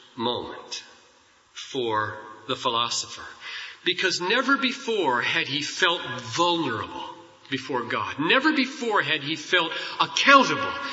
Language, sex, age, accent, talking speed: English, male, 40-59, American, 105 wpm